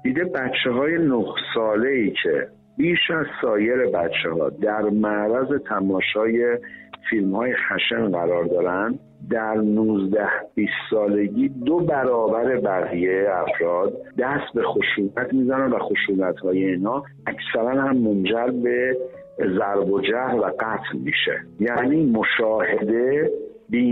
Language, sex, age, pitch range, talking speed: Persian, male, 50-69, 105-150 Hz, 120 wpm